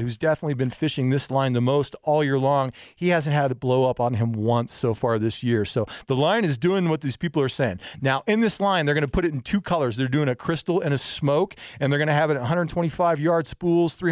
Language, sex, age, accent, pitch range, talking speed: English, male, 40-59, American, 125-160 Hz, 265 wpm